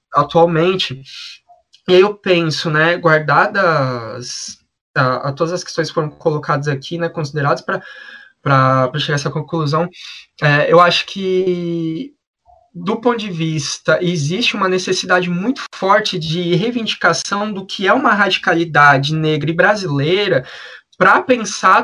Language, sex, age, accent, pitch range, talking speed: Portuguese, male, 20-39, Brazilian, 150-195 Hz, 120 wpm